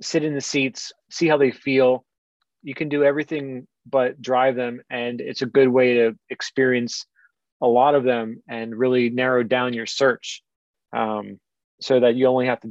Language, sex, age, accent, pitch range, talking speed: English, male, 30-49, American, 125-150 Hz, 185 wpm